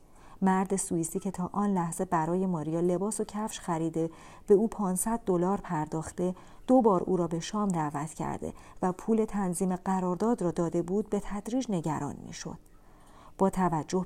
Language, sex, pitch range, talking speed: Persian, female, 170-210 Hz, 160 wpm